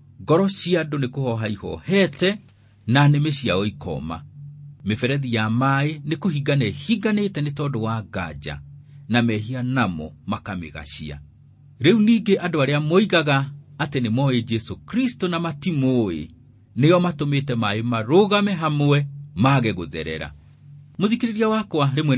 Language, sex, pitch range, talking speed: English, male, 100-145 Hz, 120 wpm